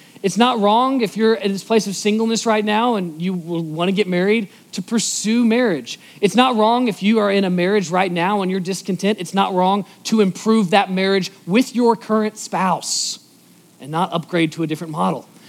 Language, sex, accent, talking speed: English, male, American, 205 wpm